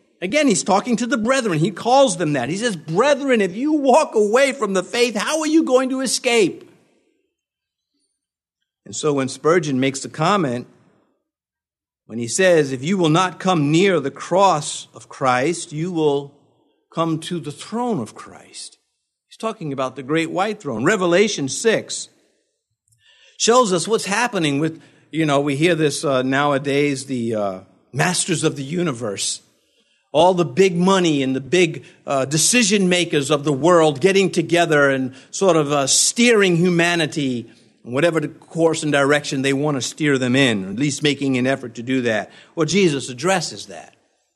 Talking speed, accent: 170 wpm, American